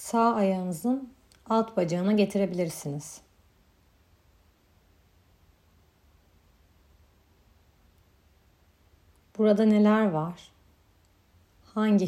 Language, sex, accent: Turkish, female, native